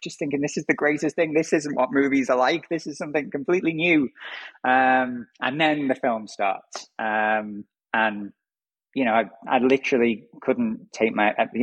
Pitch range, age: 115-140 Hz, 20-39